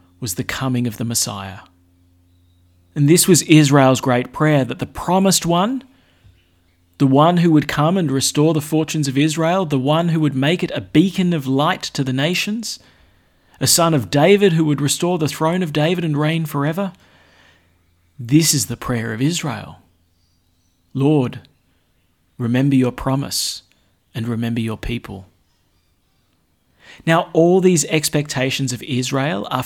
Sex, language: male, English